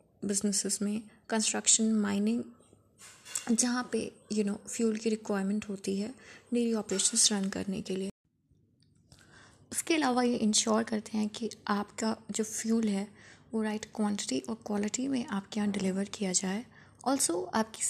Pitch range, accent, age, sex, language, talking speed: 200-230 Hz, native, 20-39, female, Hindi, 150 wpm